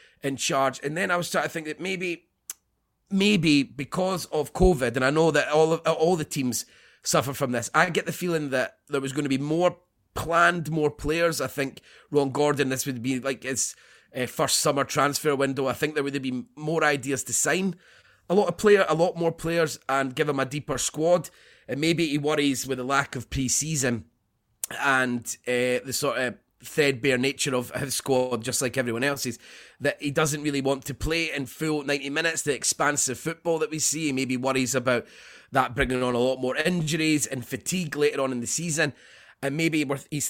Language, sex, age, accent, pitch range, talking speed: English, male, 30-49, British, 130-155 Hz, 205 wpm